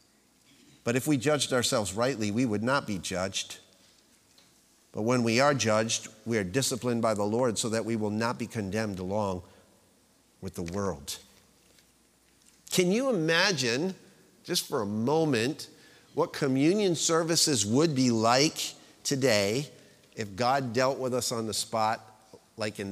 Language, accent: English, American